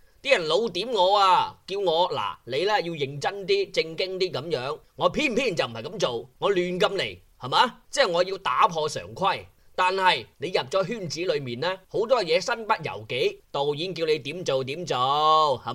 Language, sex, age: Chinese, male, 20-39